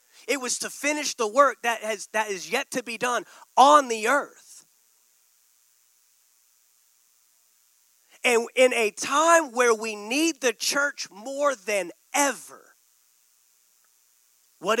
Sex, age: male, 30-49